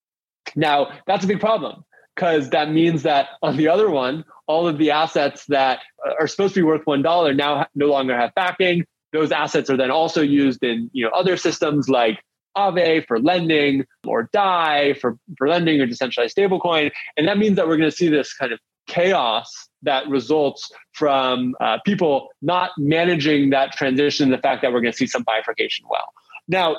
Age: 20-39